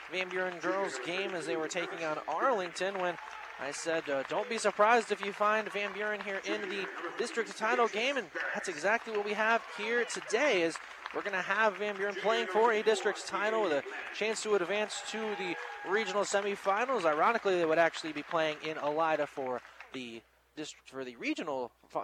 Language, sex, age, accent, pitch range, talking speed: English, male, 20-39, American, 160-215 Hz, 195 wpm